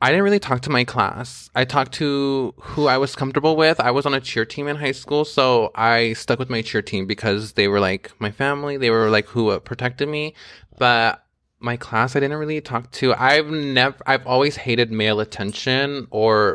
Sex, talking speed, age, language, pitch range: male, 210 wpm, 20-39, English, 110-140 Hz